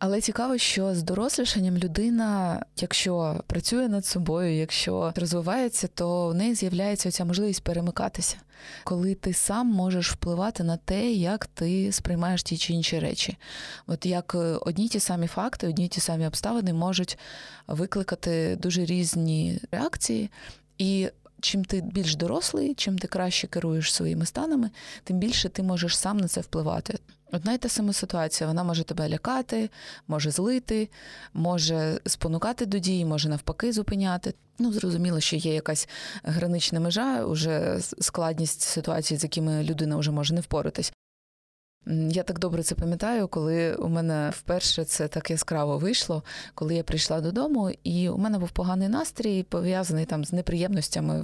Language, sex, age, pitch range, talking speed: Ukrainian, female, 20-39, 165-210 Hz, 150 wpm